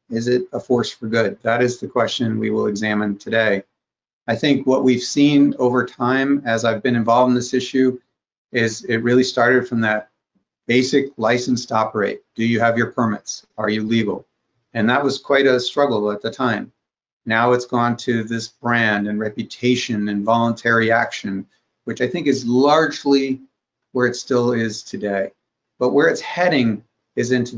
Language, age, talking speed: English, 50-69, 180 wpm